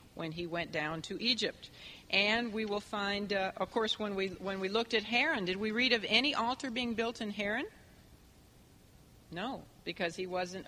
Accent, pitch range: American, 185-235 Hz